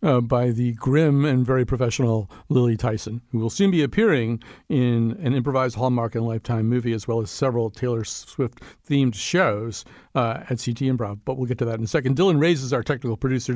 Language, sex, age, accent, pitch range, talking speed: English, male, 50-69, American, 115-150 Hz, 205 wpm